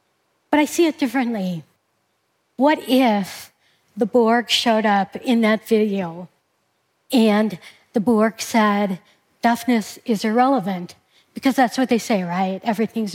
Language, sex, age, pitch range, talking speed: English, female, 60-79, 200-250 Hz, 130 wpm